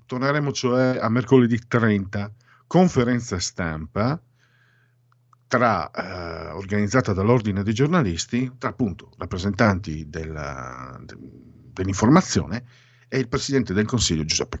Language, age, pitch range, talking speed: Italian, 50-69, 95-125 Hz, 105 wpm